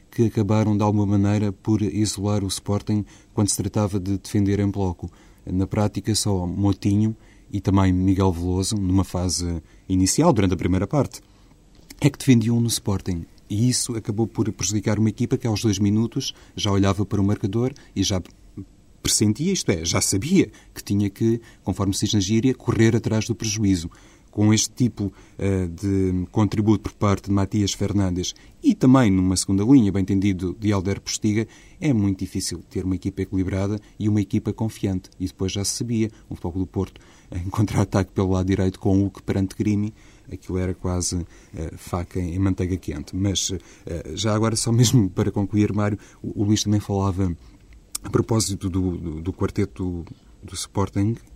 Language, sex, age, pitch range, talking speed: Portuguese, male, 30-49, 95-110 Hz, 180 wpm